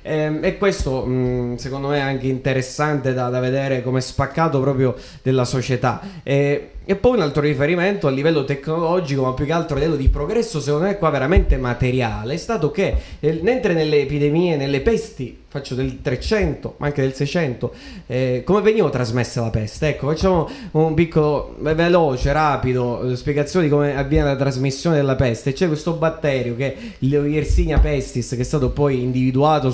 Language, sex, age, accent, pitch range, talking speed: Italian, male, 20-39, native, 125-160 Hz, 170 wpm